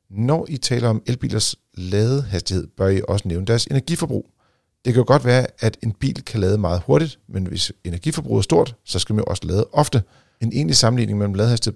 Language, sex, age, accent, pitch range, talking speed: Danish, male, 40-59, native, 95-125 Hz, 210 wpm